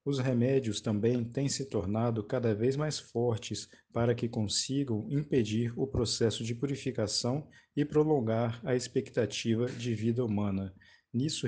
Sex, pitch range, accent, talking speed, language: male, 110-135 Hz, Brazilian, 135 wpm, Portuguese